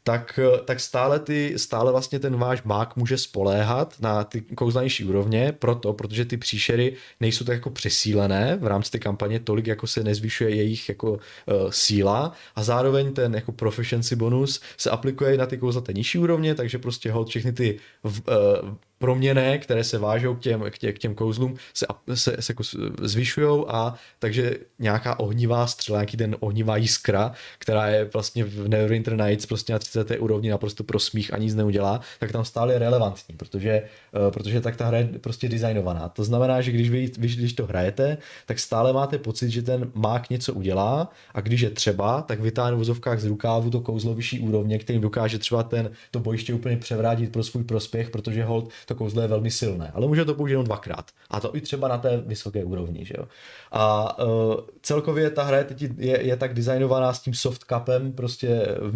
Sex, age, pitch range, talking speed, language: male, 20-39, 110-125 Hz, 190 wpm, Czech